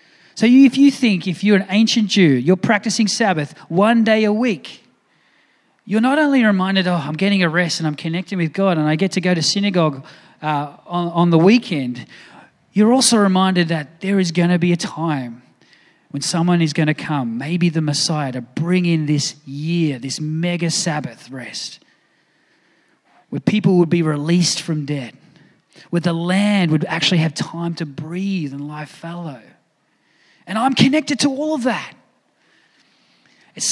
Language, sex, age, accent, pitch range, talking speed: English, male, 30-49, Australian, 155-205 Hz, 175 wpm